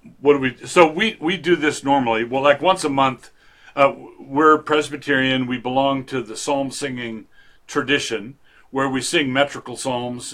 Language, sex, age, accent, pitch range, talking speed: English, male, 50-69, American, 120-145 Hz, 175 wpm